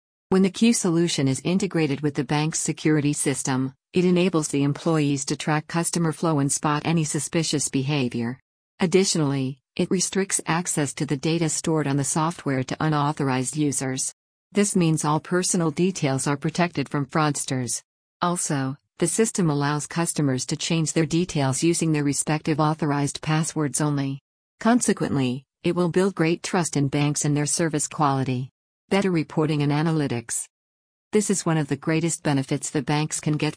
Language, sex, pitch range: English, female, 140-165 Hz